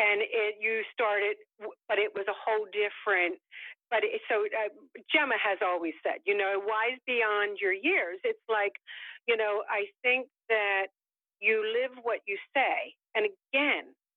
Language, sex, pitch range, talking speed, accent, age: English, female, 195-285 Hz, 155 wpm, American, 50-69